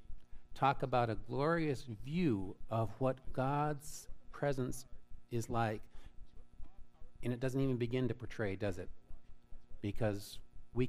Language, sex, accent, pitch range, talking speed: English, male, American, 105-130 Hz, 120 wpm